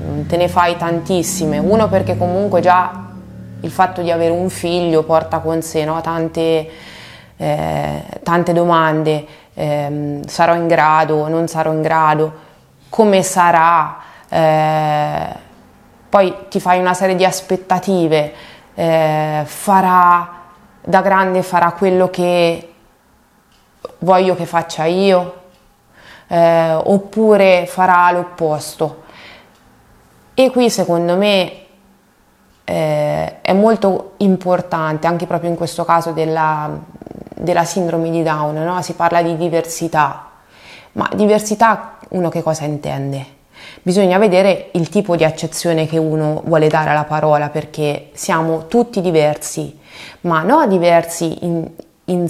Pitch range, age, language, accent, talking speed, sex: 155-185 Hz, 20-39, Italian, native, 120 wpm, female